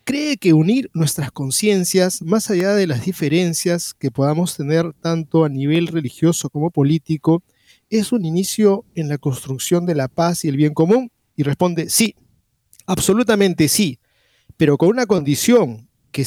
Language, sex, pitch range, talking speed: Spanish, male, 140-195 Hz, 155 wpm